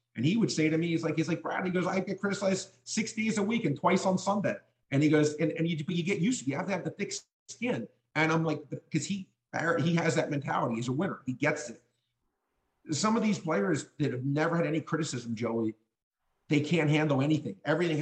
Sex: male